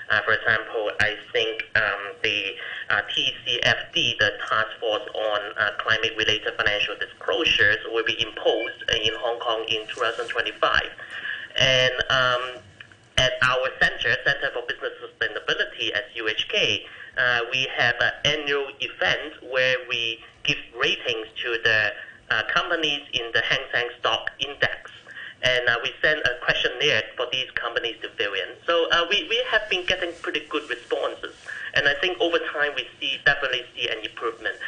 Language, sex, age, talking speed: English, male, 30-49, 155 wpm